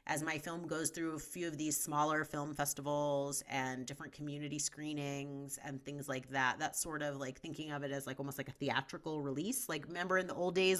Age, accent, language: 30-49, American, English